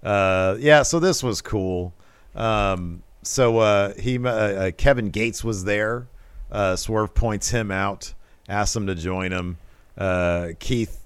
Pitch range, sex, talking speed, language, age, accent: 95-115 Hz, male, 150 wpm, English, 40-59, American